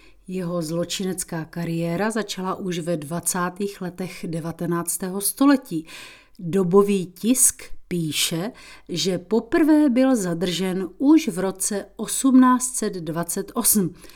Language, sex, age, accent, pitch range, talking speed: Czech, female, 40-59, native, 170-230 Hz, 90 wpm